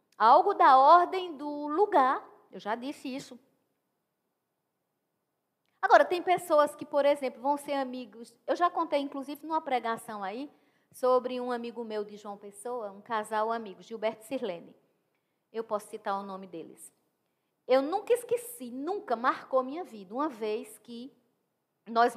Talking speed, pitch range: 145 wpm, 220-300 Hz